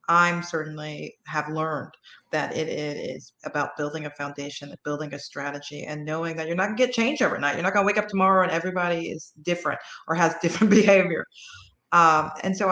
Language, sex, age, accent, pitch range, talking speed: English, female, 30-49, American, 155-190 Hz, 200 wpm